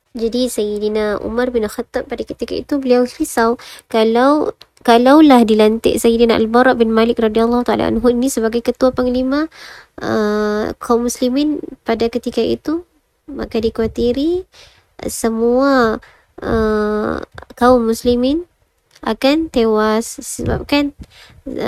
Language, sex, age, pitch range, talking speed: Malay, male, 20-39, 215-250 Hz, 110 wpm